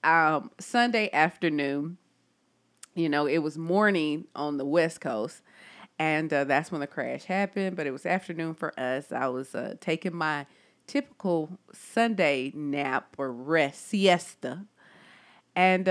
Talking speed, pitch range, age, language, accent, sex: 140 wpm, 155-210 Hz, 30-49, English, American, female